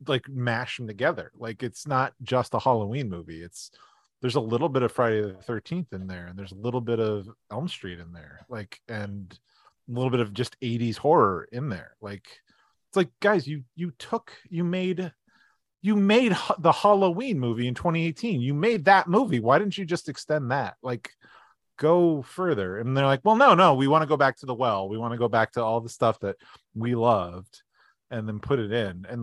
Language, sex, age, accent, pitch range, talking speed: English, male, 30-49, American, 110-155 Hz, 215 wpm